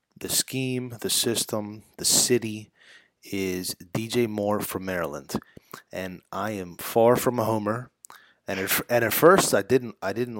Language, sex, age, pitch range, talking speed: English, male, 30-49, 95-115 Hz, 160 wpm